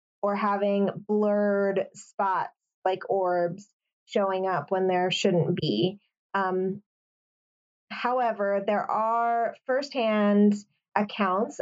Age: 20-39